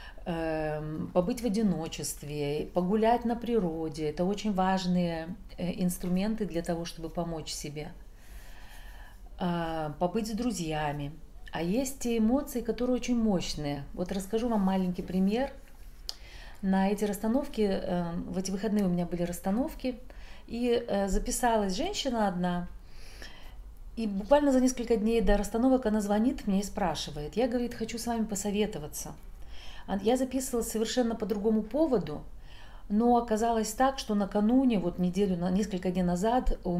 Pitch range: 175-230 Hz